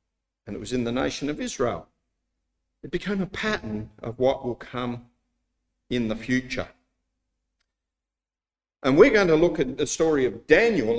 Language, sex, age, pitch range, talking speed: English, male, 50-69, 115-175 Hz, 160 wpm